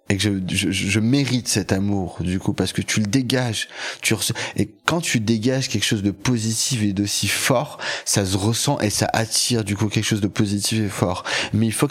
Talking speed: 225 wpm